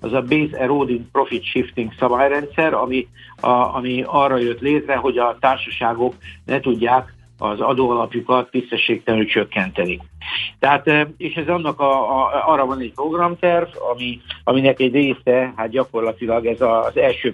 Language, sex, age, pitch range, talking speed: Hungarian, male, 60-79, 115-145 Hz, 145 wpm